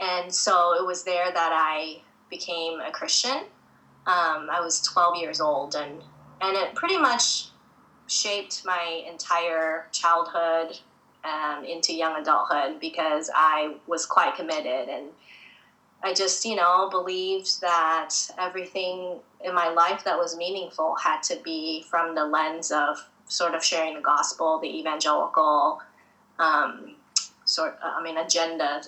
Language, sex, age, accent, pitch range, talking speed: English, female, 20-39, American, 165-195 Hz, 145 wpm